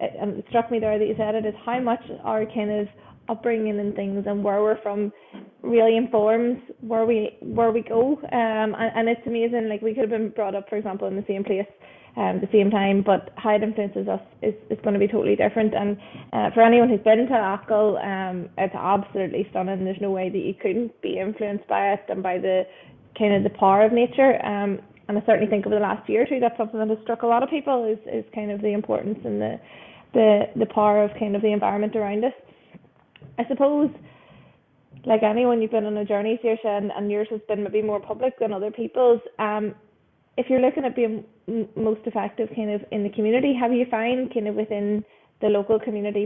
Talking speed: 225 wpm